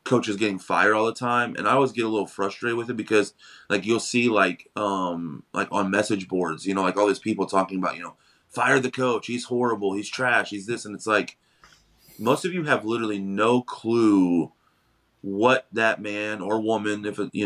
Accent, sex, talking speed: American, male, 210 wpm